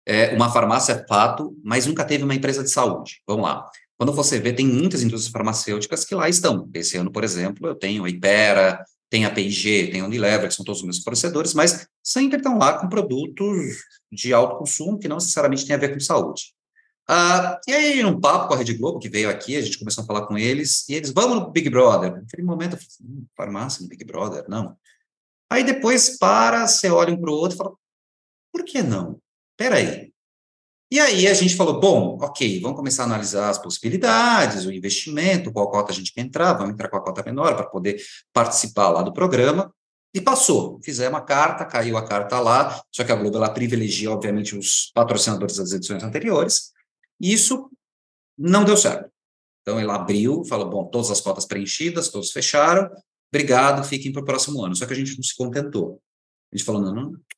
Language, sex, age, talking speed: Portuguese, male, 30-49, 210 wpm